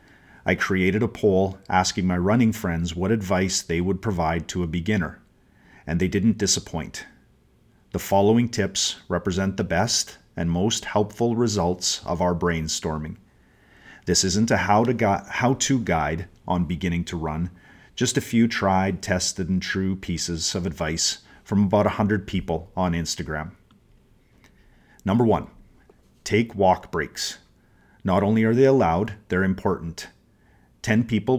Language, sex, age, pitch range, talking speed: English, male, 40-59, 90-110 Hz, 145 wpm